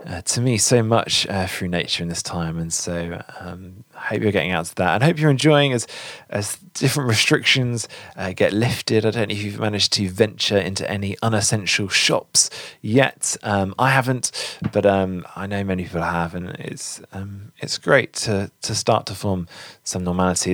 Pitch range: 90-105 Hz